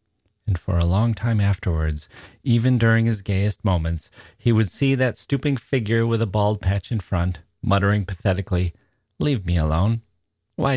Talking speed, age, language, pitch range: 160 wpm, 40-59, English, 85-105 Hz